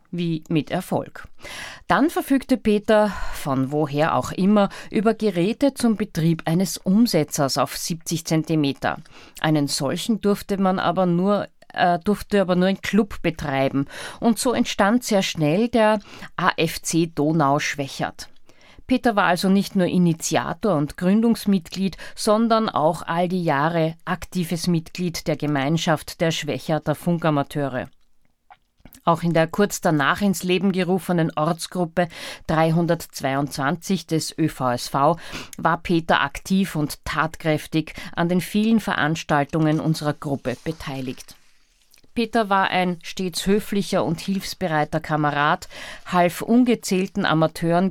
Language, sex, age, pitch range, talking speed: German, female, 50-69, 155-195 Hz, 120 wpm